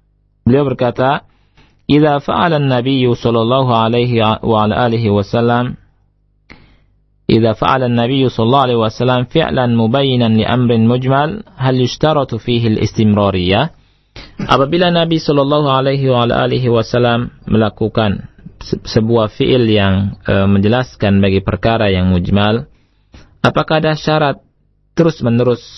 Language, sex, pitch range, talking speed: Indonesian, male, 105-130 Hz, 65 wpm